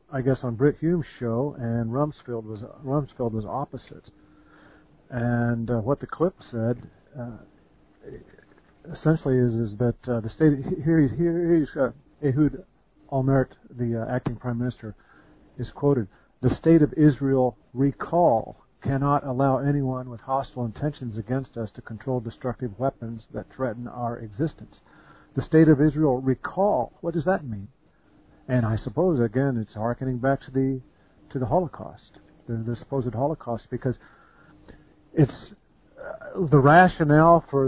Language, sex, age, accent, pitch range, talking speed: English, male, 50-69, American, 120-145 Hz, 145 wpm